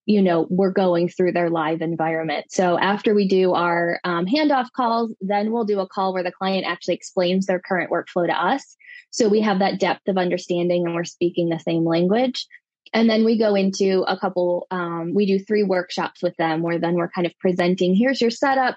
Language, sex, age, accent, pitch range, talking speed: English, female, 20-39, American, 170-195 Hz, 215 wpm